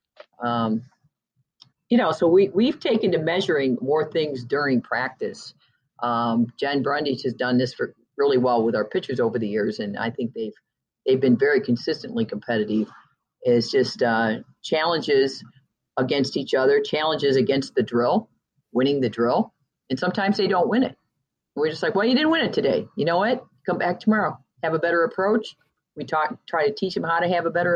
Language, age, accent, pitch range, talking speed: English, 40-59, American, 125-200 Hz, 190 wpm